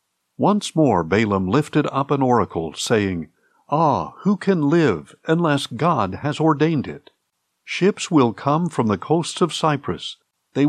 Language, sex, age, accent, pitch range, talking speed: English, male, 60-79, American, 110-160 Hz, 145 wpm